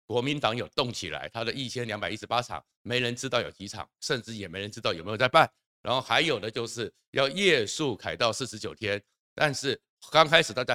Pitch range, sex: 115-150 Hz, male